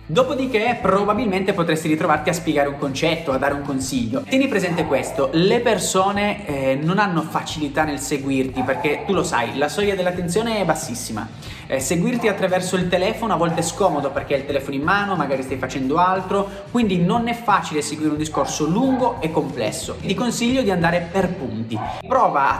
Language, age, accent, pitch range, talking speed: Italian, 20-39, native, 140-205 Hz, 185 wpm